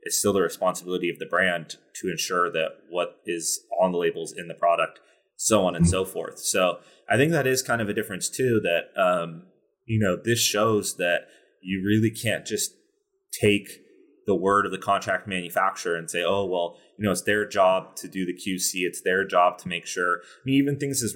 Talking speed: 215 wpm